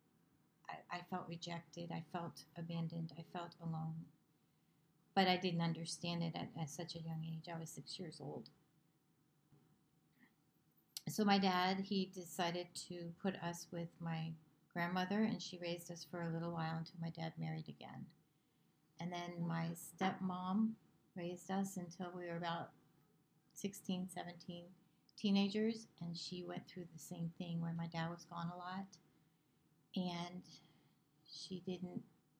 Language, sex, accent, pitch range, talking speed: English, female, American, 160-180 Hz, 145 wpm